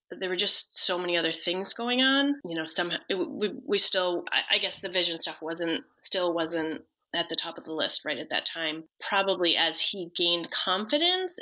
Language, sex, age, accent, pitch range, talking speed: English, female, 20-39, American, 160-205 Hz, 200 wpm